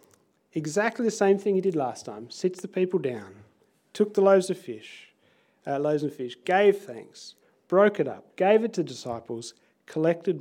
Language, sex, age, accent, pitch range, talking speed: English, male, 40-59, Australian, 150-205 Hz, 180 wpm